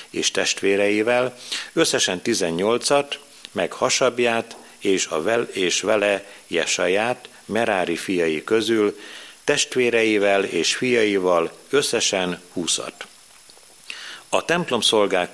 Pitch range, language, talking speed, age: 95-120 Hz, Hungarian, 85 wpm, 50-69